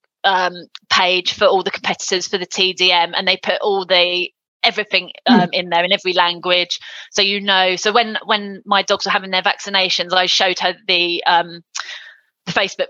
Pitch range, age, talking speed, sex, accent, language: 180-205 Hz, 20-39, 185 wpm, female, British, English